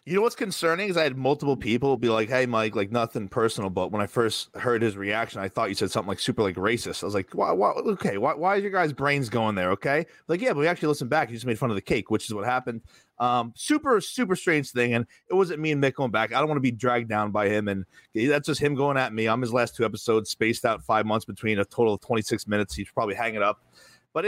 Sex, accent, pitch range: male, American, 110-155 Hz